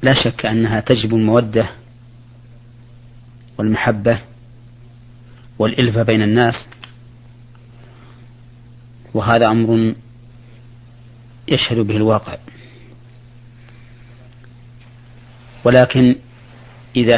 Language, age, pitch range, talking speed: Arabic, 40-59, 115-120 Hz, 55 wpm